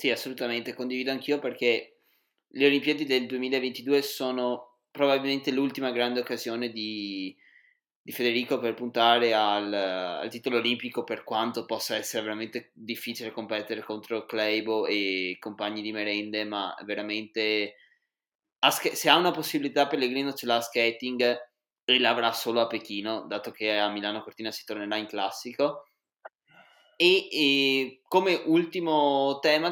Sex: male